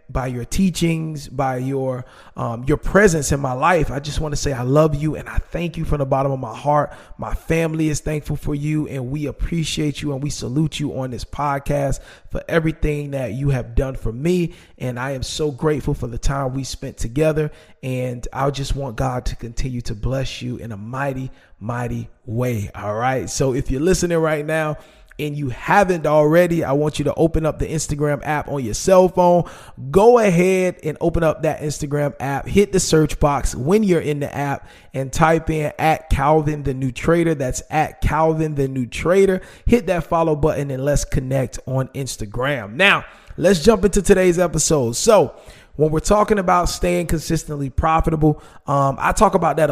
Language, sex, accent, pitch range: English, male, American, 130-160 Hz